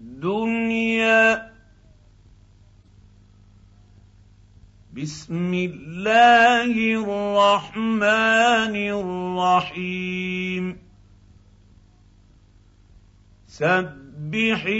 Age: 50-69